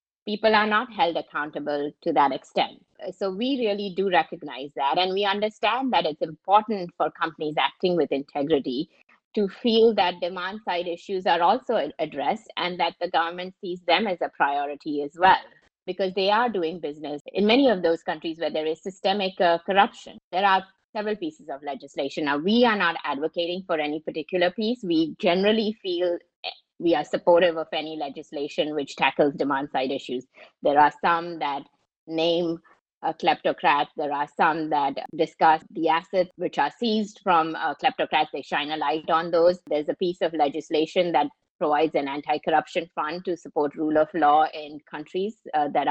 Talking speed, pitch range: 175 wpm, 150-195 Hz